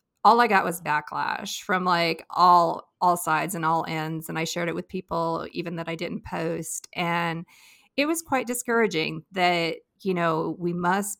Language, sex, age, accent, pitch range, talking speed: English, female, 40-59, American, 175-225 Hz, 180 wpm